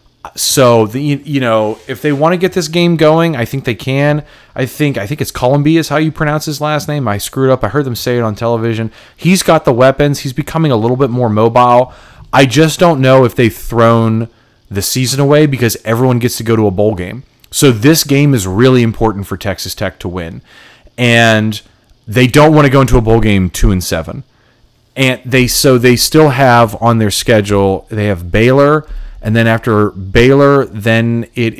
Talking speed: 210 wpm